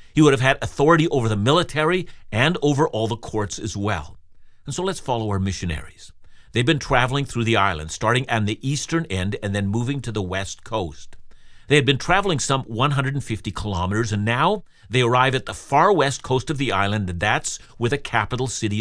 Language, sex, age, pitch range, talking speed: English, male, 50-69, 110-145 Hz, 205 wpm